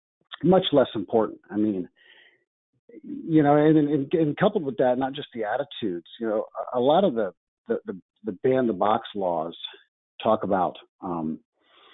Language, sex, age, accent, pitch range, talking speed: English, male, 50-69, American, 120-170 Hz, 175 wpm